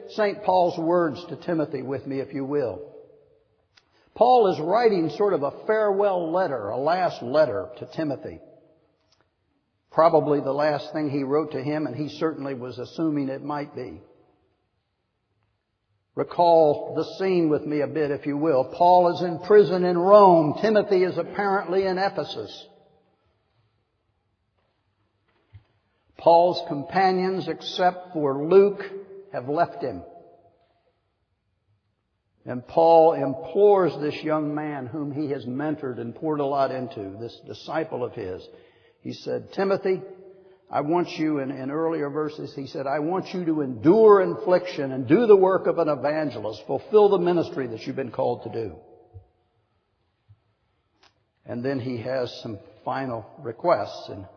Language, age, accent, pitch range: English, 60-79, American, 115-175 Hz